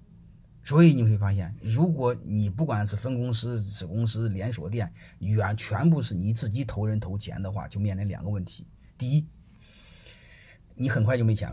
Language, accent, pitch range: Chinese, native, 105-150 Hz